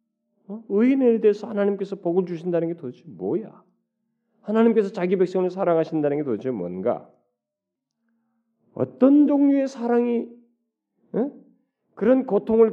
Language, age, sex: Korean, 40-59, male